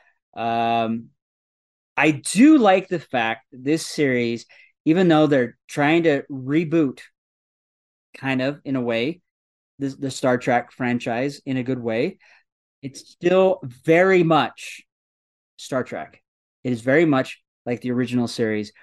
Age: 30-49